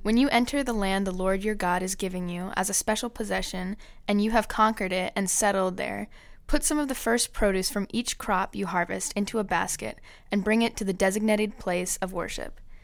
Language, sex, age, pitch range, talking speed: English, female, 10-29, 185-220 Hz, 220 wpm